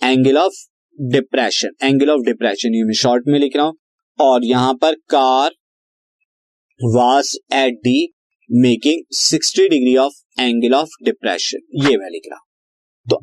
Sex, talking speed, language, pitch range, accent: male, 130 wpm, Hindi, 135-195 Hz, native